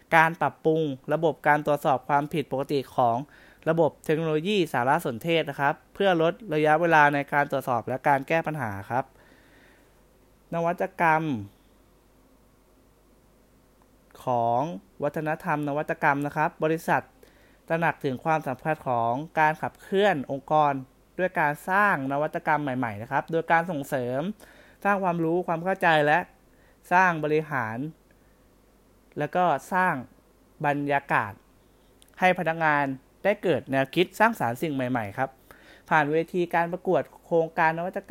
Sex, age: male, 20-39